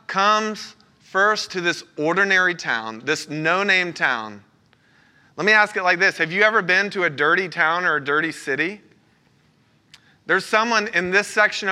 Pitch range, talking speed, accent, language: 165-205 Hz, 165 wpm, American, English